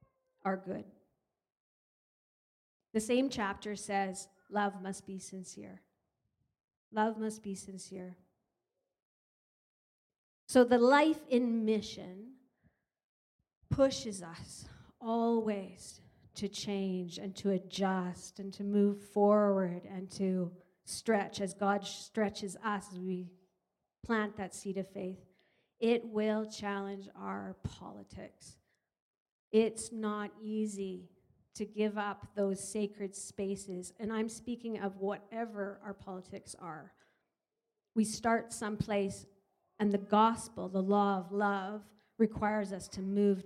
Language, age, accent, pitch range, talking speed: English, 40-59, American, 190-215 Hz, 110 wpm